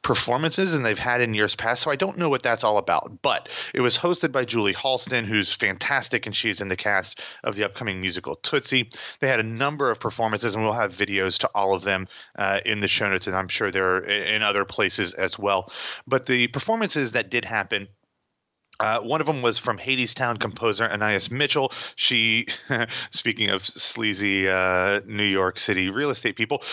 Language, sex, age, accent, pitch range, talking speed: English, male, 30-49, American, 105-130 Hz, 200 wpm